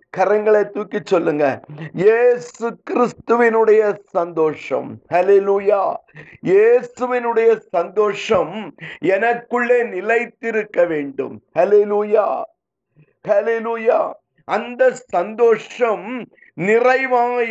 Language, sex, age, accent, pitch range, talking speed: Tamil, male, 50-69, native, 195-255 Hz, 40 wpm